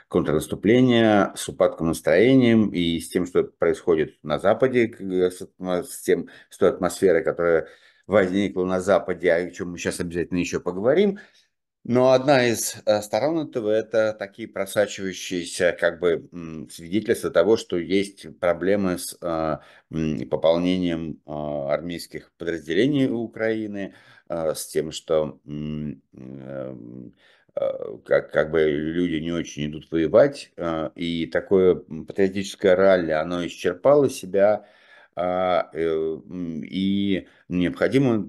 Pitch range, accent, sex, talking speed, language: 85-105 Hz, native, male, 115 wpm, Russian